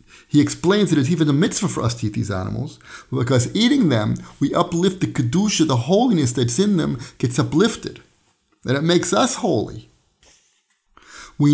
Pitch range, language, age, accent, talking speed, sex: 125-170 Hz, English, 50-69, American, 170 wpm, male